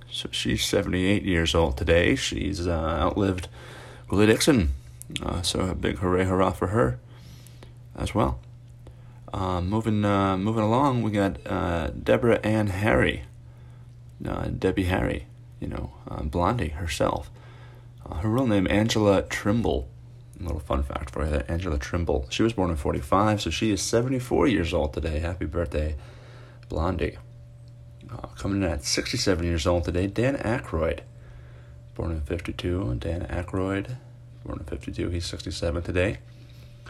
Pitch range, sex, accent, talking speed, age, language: 85-120 Hz, male, American, 150 wpm, 30-49, English